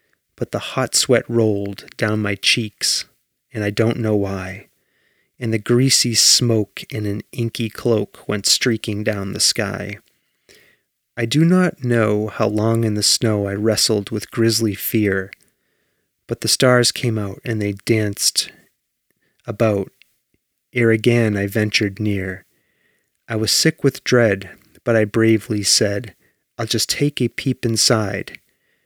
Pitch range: 105-125 Hz